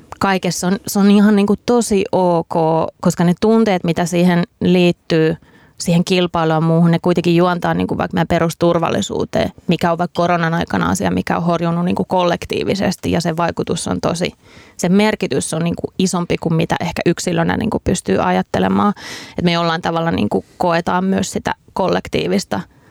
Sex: female